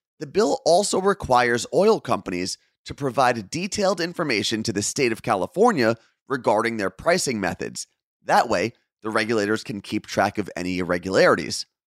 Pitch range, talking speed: 105-150 Hz, 145 wpm